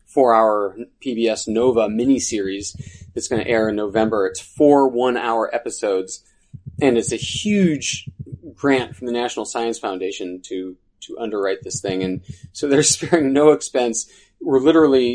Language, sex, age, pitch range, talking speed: English, male, 30-49, 110-130 Hz, 155 wpm